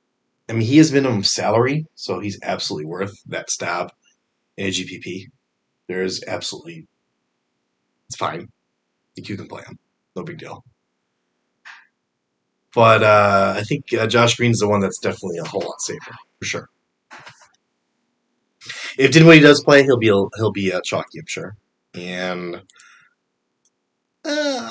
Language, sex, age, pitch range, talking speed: English, male, 30-49, 95-140 Hz, 150 wpm